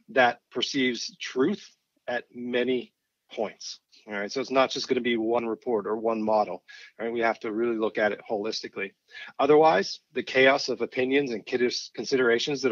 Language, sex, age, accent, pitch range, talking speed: English, male, 30-49, American, 110-130 Hz, 180 wpm